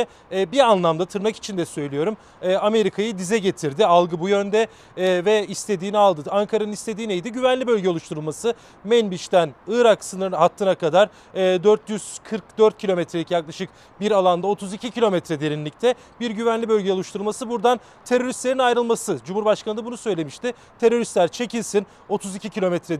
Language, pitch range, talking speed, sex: Turkish, 185-230 Hz, 125 wpm, male